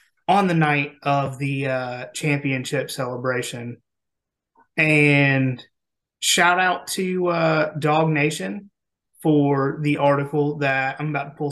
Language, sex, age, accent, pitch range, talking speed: English, male, 30-49, American, 135-160 Hz, 120 wpm